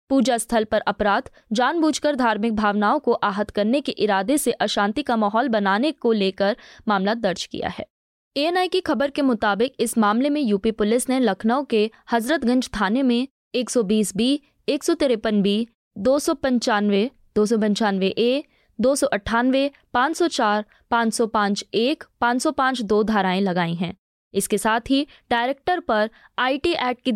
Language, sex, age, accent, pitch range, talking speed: Hindi, female, 20-39, native, 215-275 Hz, 150 wpm